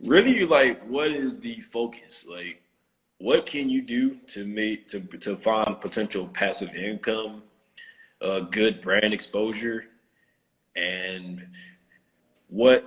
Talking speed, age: 125 wpm, 20-39